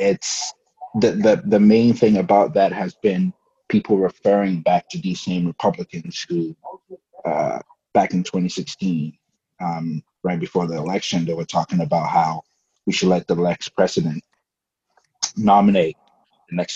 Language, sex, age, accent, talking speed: English, male, 30-49, American, 145 wpm